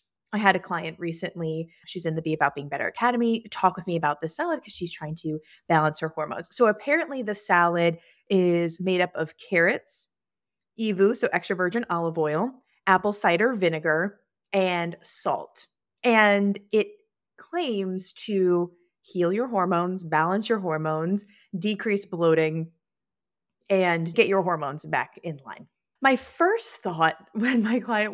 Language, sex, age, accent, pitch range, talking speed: English, female, 20-39, American, 170-225 Hz, 150 wpm